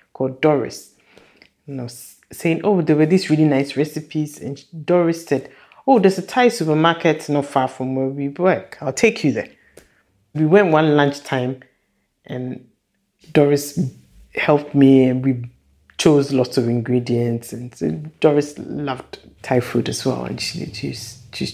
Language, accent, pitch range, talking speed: English, Nigerian, 130-175 Hz, 155 wpm